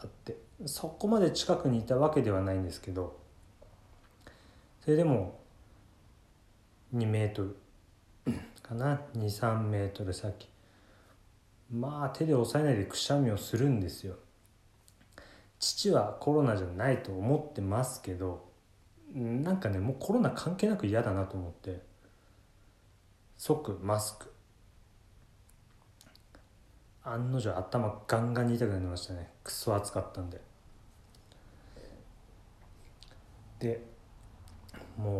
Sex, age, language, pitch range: male, 30-49, Japanese, 95-120 Hz